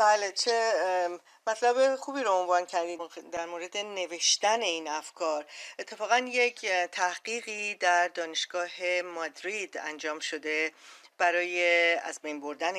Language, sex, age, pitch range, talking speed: Persian, female, 40-59, 170-235 Hz, 115 wpm